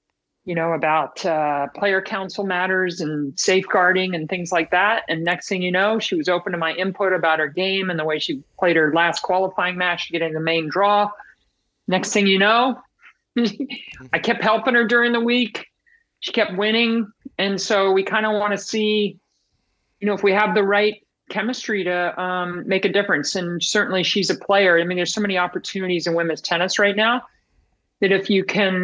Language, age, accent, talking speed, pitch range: English, 50-69, American, 200 wpm, 170-205 Hz